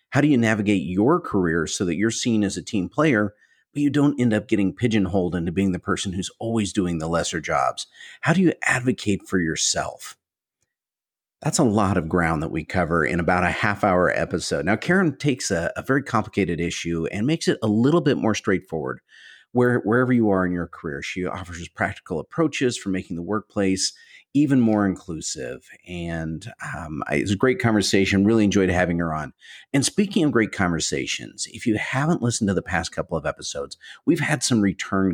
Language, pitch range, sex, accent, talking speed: English, 90-125 Hz, male, American, 195 wpm